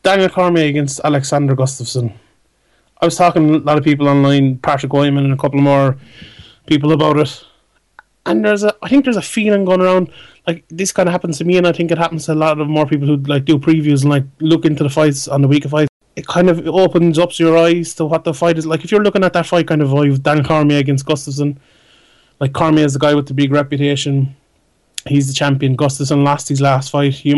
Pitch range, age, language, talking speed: 140-165 Hz, 20-39, English, 240 wpm